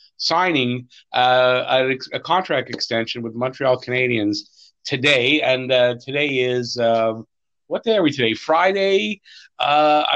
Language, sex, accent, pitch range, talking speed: English, male, American, 125-165 Hz, 130 wpm